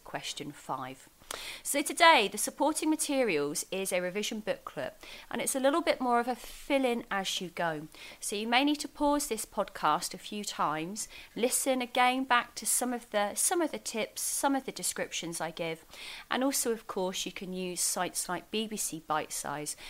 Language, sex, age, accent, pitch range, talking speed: English, female, 30-49, British, 170-255 Hz, 195 wpm